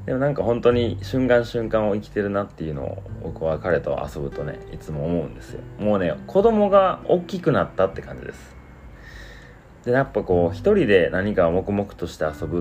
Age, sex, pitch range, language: 30-49, male, 80-110 Hz, Japanese